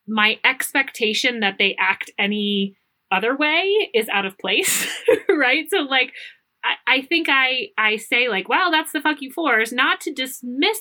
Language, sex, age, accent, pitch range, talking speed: English, female, 30-49, American, 220-315 Hz, 170 wpm